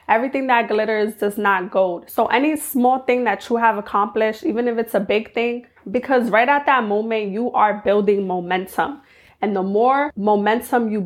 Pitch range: 200-235 Hz